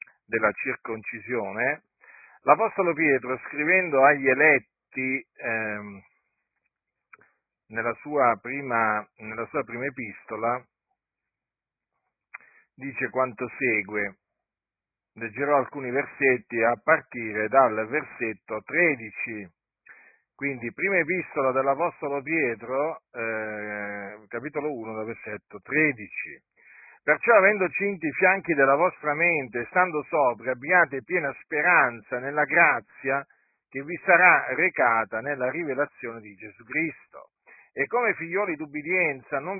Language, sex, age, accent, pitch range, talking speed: Italian, male, 50-69, native, 120-160 Hz, 95 wpm